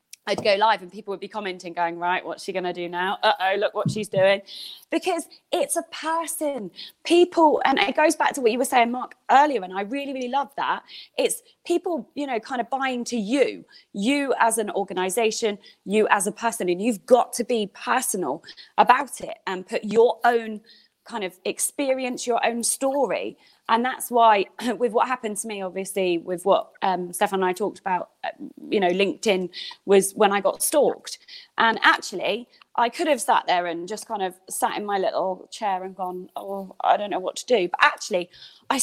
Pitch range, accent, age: 195-265 Hz, British, 20-39